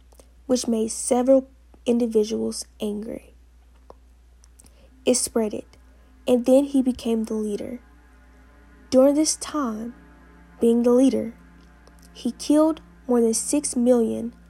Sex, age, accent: female, 10-29, American